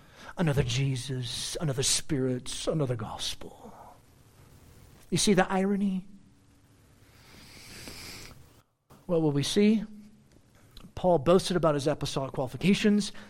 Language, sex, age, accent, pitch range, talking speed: English, male, 40-59, American, 130-210 Hz, 90 wpm